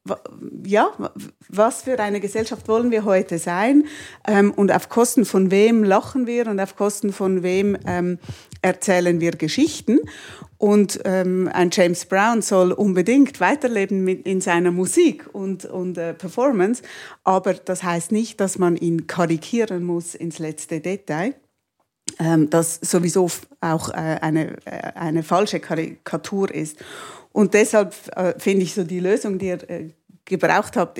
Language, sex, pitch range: German, female, 175-220 Hz